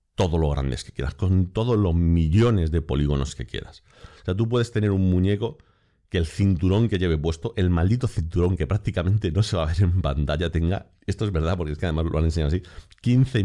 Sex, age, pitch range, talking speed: male, 40-59, 80-100 Hz, 230 wpm